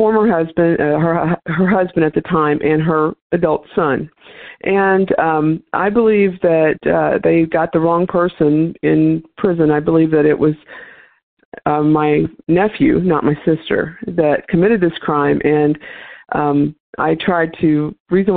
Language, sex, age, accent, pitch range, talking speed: English, female, 50-69, American, 155-180 Hz, 155 wpm